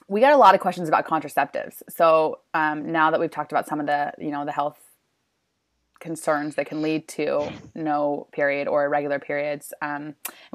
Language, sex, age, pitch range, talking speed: English, female, 20-39, 150-185 Hz, 195 wpm